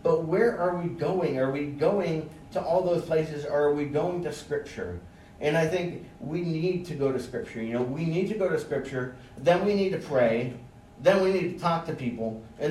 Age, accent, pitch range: 40-59, American, 115-150 Hz